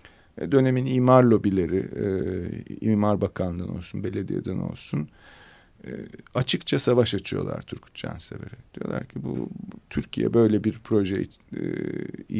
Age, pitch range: 40-59, 95-115 Hz